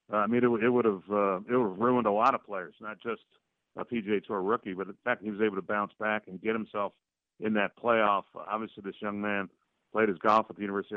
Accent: American